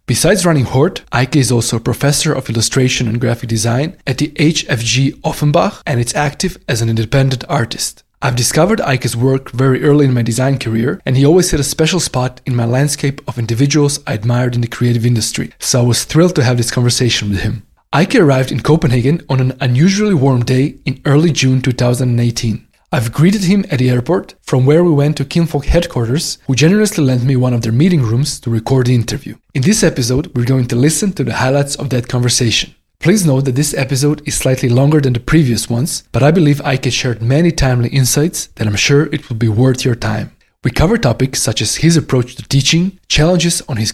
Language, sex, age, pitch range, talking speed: English, male, 20-39, 125-155 Hz, 210 wpm